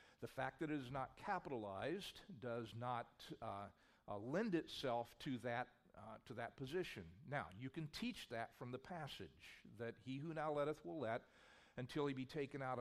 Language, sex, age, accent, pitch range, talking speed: English, male, 50-69, American, 115-150 Hz, 185 wpm